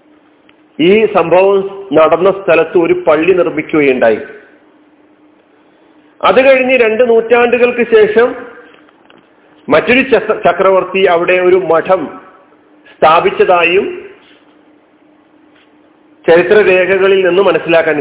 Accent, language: native, Malayalam